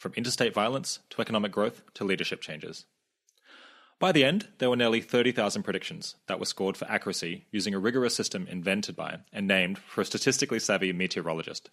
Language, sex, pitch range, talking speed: English, male, 100-130 Hz, 180 wpm